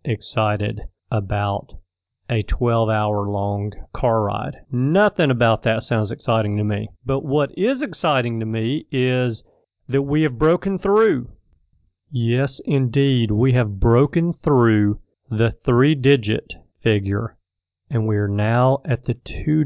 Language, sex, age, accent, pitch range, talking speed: English, male, 40-59, American, 110-140 Hz, 135 wpm